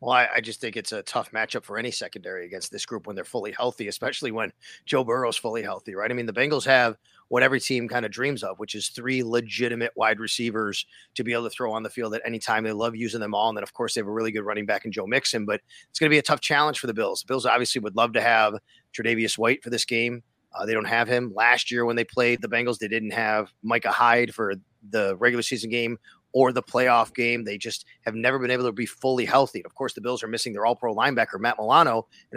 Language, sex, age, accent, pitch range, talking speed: English, male, 30-49, American, 115-130 Hz, 270 wpm